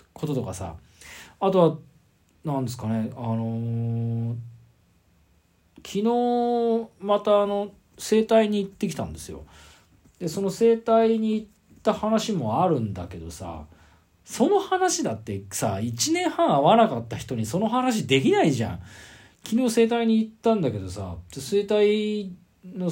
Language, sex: Japanese, male